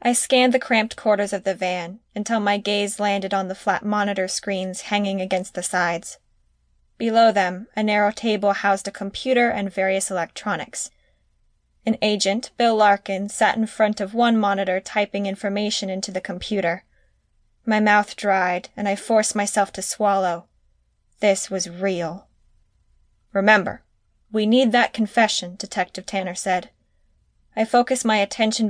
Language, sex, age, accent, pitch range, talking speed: English, female, 10-29, American, 185-215 Hz, 150 wpm